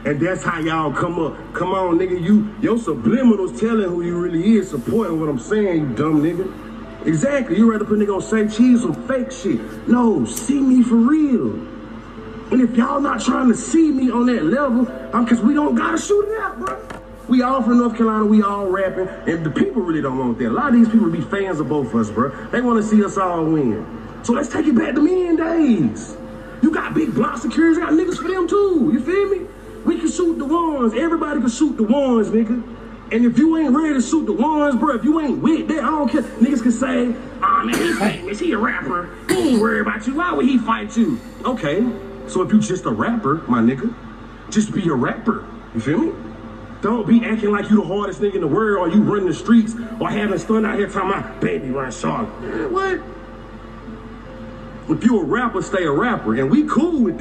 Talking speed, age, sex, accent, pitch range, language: 235 wpm, 30-49, male, American, 205-285 Hz, English